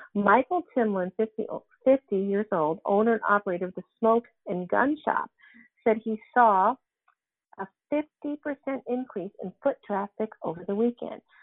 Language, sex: English, female